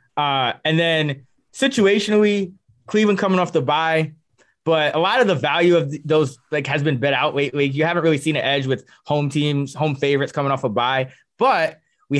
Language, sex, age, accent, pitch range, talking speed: English, male, 20-39, American, 135-175 Hz, 195 wpm